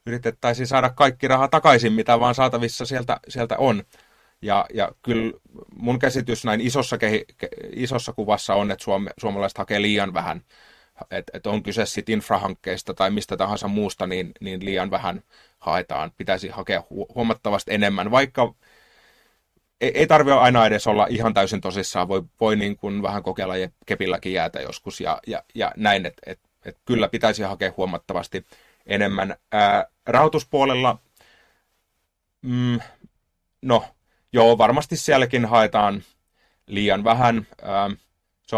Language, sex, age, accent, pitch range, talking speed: Finnish, male, 30-49, native, 100-120 Hz, 140 wpm